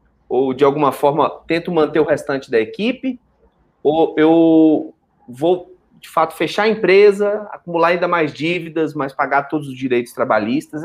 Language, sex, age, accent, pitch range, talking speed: Portuguese, male, 30-49, Brazilian, 155-210 Hz, 155 wpm